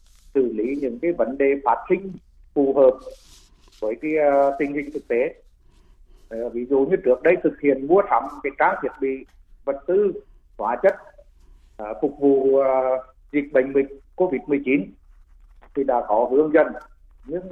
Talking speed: 165 wpm